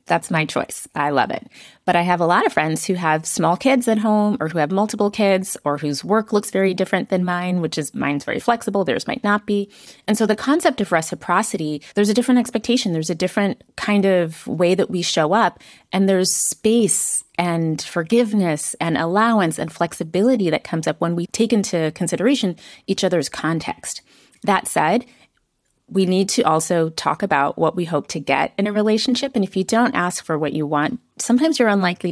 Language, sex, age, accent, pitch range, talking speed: English, female, 30-49, American, 155-210 Hz, 205 wpm